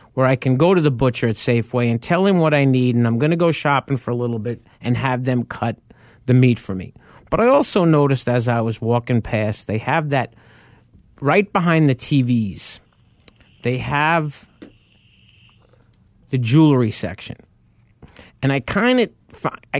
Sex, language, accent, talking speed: male, English, American, 175 wpm